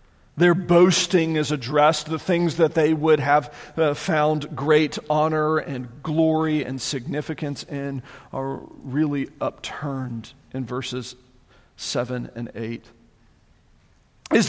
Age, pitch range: 40-59, 140-220 Hz